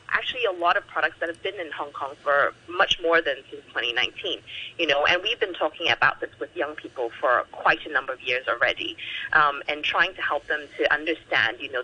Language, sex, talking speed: English, female, 230 wpm